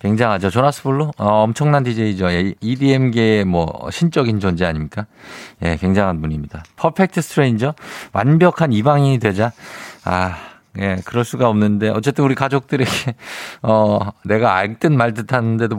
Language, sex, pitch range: Korean, male, 100-140 Hz